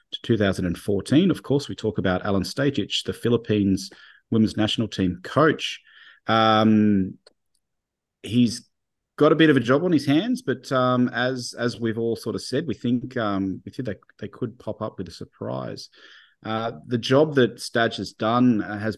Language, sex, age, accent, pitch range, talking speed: English, male, 30-49, Australian, 95-115 Hz, 175 wpm